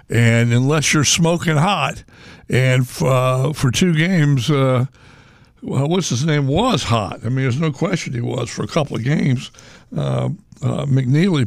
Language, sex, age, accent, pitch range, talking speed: English, male, 60-79, American, 120-150 Hz, 175 wpm